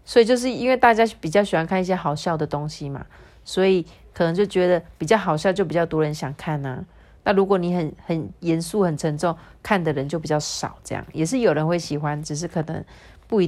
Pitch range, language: 165-250 Hz, Chinese